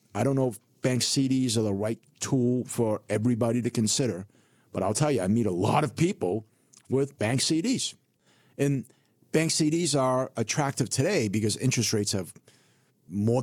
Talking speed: 170 wpm